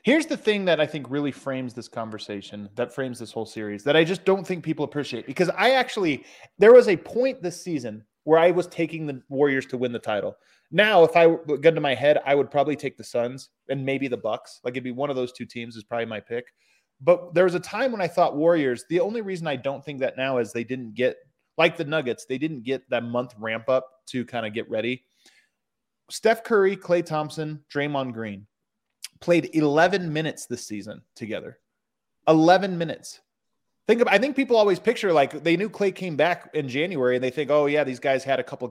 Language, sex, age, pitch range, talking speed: English, male, 20-39, 125-180 Hz, 225 wpm